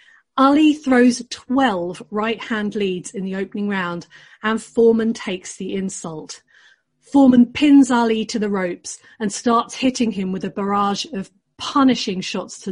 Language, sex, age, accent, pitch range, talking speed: English, female, 40-59, British, 195-255 Hz, 145 wpm